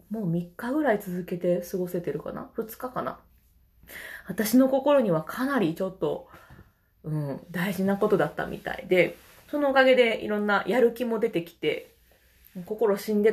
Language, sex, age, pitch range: Japanese, female, 20-39, 175-265 Hz